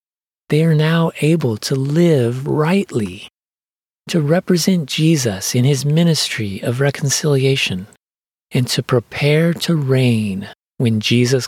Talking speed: 115 wpm